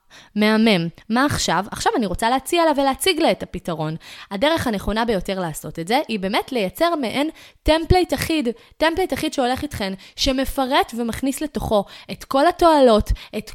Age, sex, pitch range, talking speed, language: 20-39, female, 205-285 Hz, 155 wpm, Hebrew